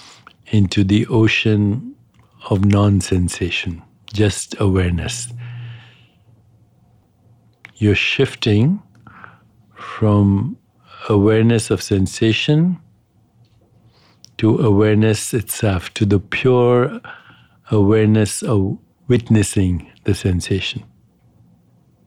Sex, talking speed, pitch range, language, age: male, 65 wpm, 105-115 Hz, English, 60-79